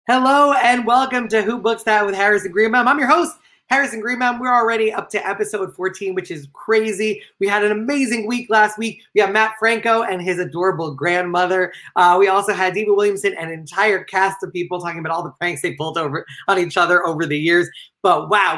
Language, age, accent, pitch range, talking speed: English, 20-39, American, 185-225 Hz, 215 wpm